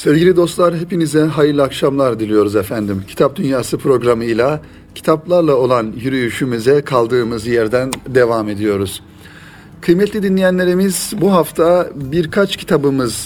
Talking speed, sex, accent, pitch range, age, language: 105 wpm, male, native, 120-160 Hz, 40-59, Turkish